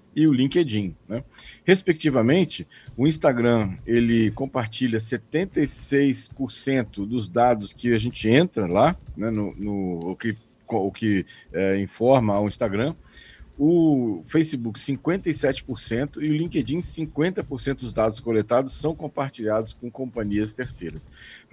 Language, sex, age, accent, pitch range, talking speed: Portuguese, male, 40-59, Brazilian, 110-140 Hz, 110 wpm